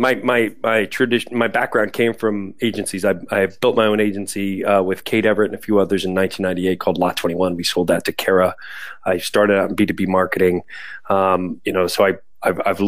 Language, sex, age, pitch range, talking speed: English, male, 30-49, 100-120 Hz, 230 wpm